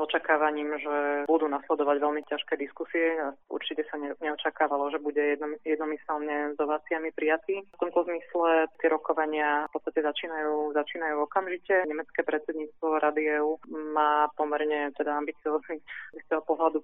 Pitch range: 150-160 Hz